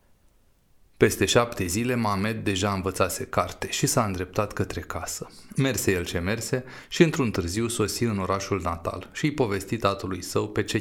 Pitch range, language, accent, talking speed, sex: 95-125 Hz, Romanian, native, 155 wpm, male